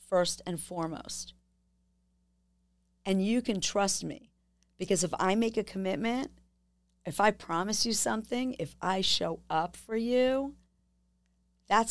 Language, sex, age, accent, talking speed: English, female, 40-59, American, 130 wpm